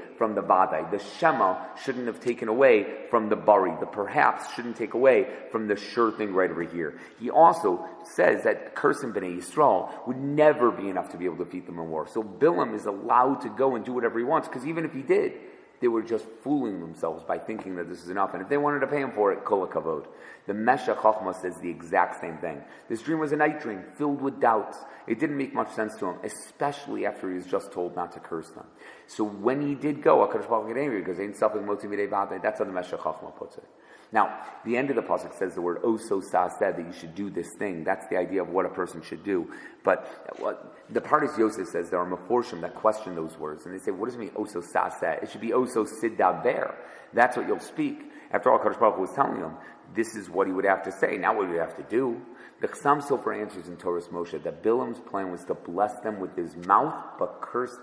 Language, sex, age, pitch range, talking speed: English, male, 30-49, 90-145 Hz, 235 wpm